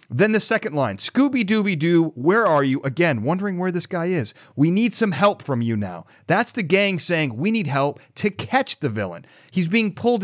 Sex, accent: male, American